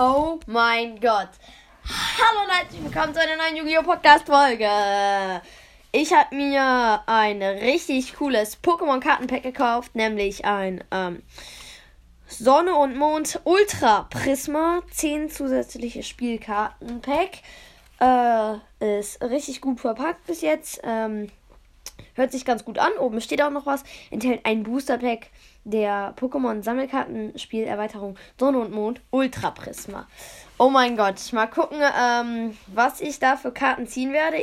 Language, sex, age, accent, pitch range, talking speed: English, female, 10-29, German, 225-285 Hz, 125 wpm